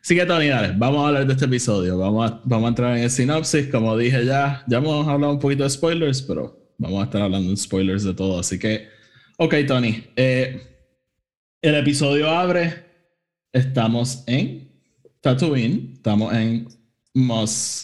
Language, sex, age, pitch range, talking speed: Spanish, male, 20-39, 110-140 Hz, 170 wpm